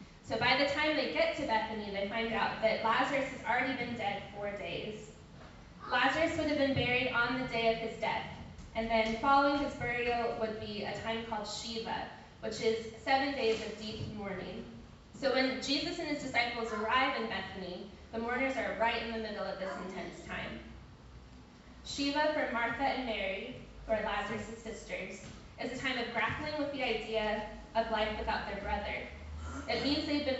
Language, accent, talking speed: English, American, 185 wpm